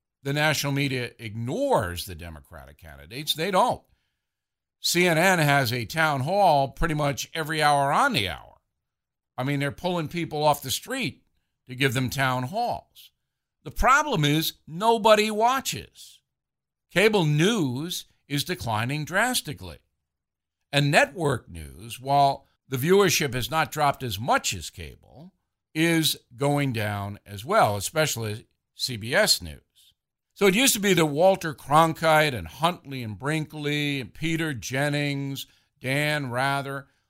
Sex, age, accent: male, 60-79, American